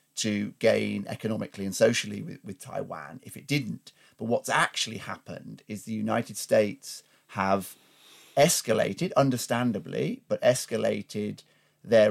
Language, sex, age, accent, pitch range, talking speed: English, male, 30-49, British, 105-125 Hz, 125 wpm